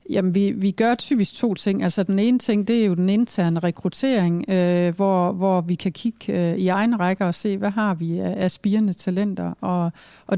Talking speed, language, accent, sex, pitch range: 215 wpm, Danish, native, female, 175-210 Hz